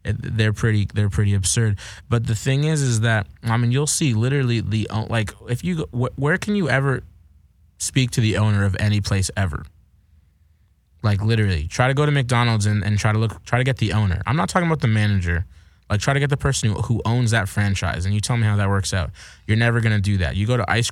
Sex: male